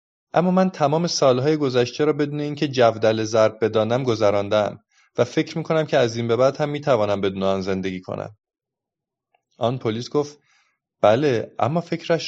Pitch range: 105-145 Hz